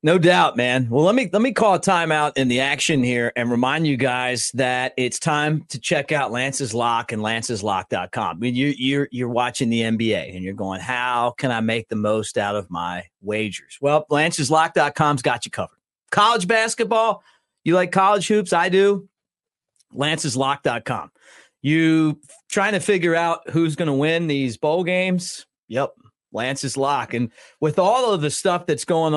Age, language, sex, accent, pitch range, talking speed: 40-59, English, male, American, 115-155 Hz, 180 wpm